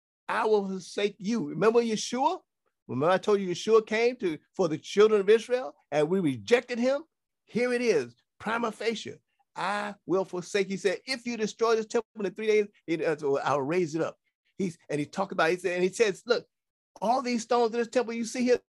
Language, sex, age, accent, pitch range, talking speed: English, male, 50-69, American, 180-235 Hz, 210 wpm